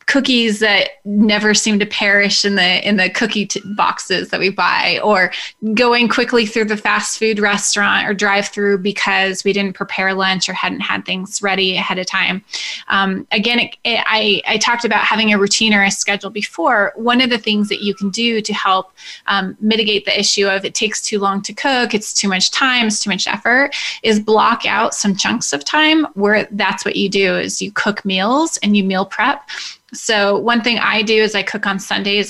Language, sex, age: English, female, 20-39